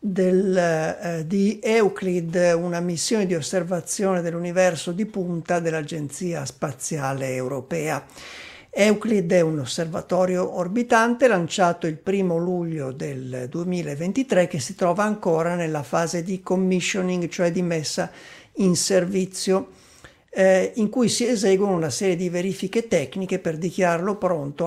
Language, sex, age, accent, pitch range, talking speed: Italian, male, 50-69, native, 170-190 Hz, 125 wpm